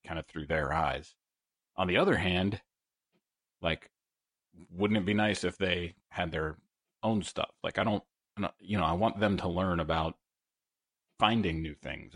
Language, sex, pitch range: English, male, 85-110 Hz